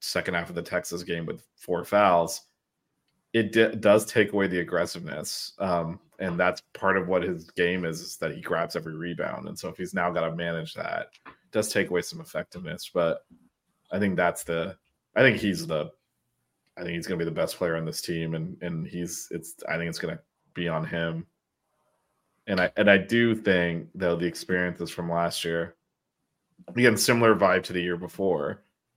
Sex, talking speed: male, 200 wpm